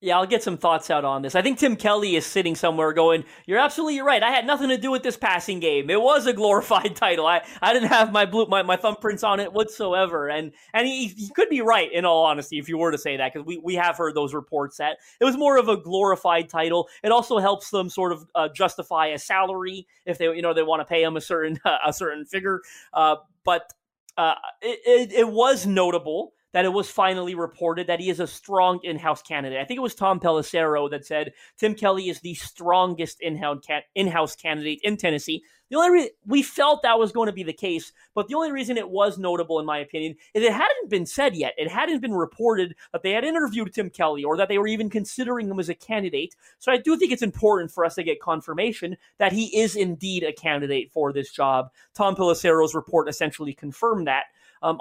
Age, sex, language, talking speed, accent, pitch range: 30-49, male, English, 235 wpm, American, 160-220 Hz